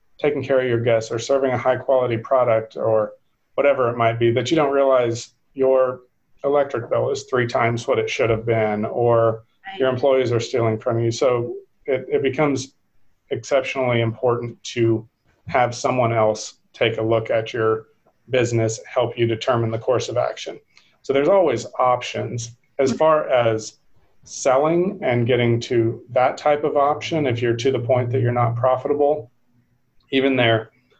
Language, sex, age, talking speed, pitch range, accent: English, male, 40-59, 170 wpm, 115-130 Hz, American